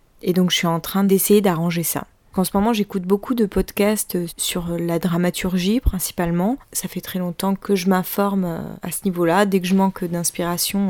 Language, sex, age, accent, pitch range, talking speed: French, female, 20-39, French, 170-195 Hz, 195 wpm